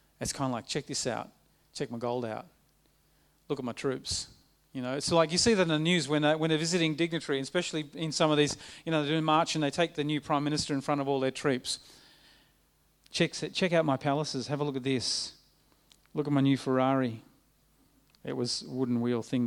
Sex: male